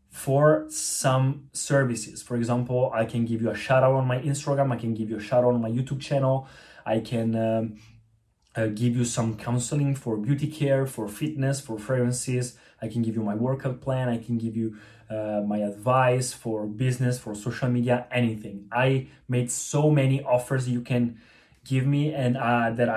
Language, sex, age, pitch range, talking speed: Italian, male, 20-39, 115-135 Hz, 190 wpm